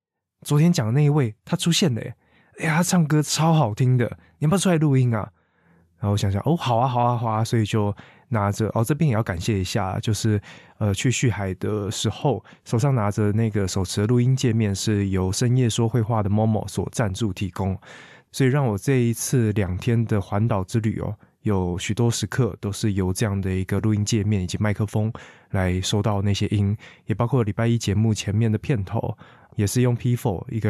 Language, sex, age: Chinese, male, 20-39